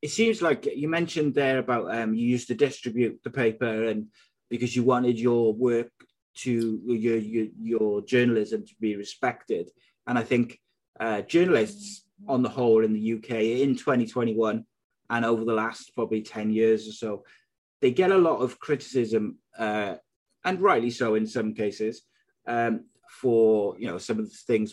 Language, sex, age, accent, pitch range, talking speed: English, male, 30-49, British, 110-130 Hz, 170 wpm